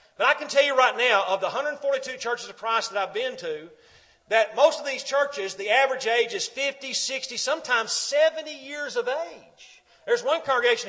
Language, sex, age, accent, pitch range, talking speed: English, male, 40-59, American, 210-310 Hz, 200 wpm